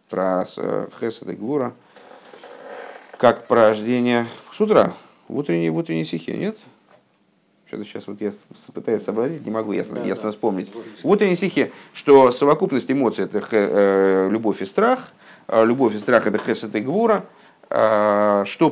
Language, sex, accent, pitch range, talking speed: Russian, male, native, 105-140 Hz, 125 wpm